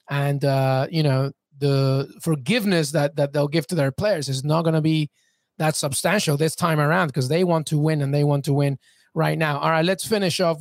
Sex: male